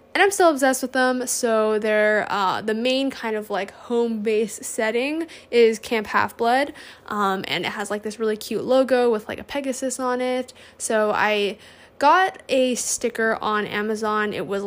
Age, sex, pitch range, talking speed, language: 10-29, female, 210-255 Hz, 180 wpm, English